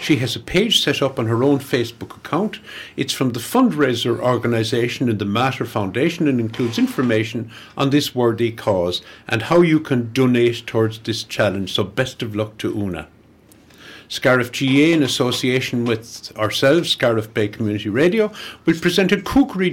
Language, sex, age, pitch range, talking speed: English, male, 60-79, 110-155 Hz, 165 wpm